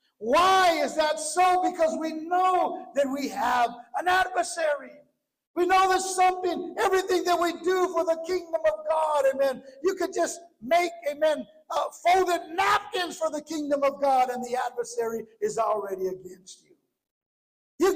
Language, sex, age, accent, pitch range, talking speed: English, male, 50-69, American, 285-365 Hz, 155 wpm